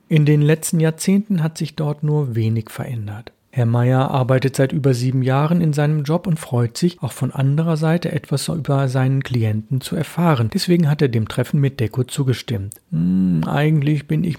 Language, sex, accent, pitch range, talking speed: German, male, German, 130-160 Hz, 190 wpm